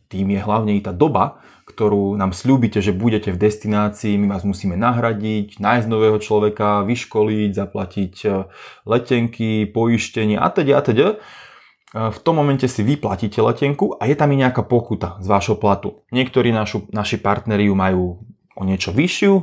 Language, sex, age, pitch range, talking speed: Czech, male, 20-39, 100-115 Hz, 160 wpm